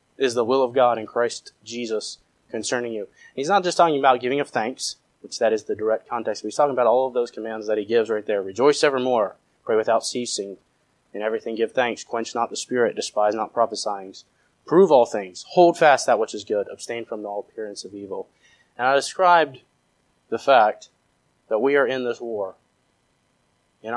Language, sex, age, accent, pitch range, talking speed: English, male, 20-39, American, 115-145 Hz, 200 wpm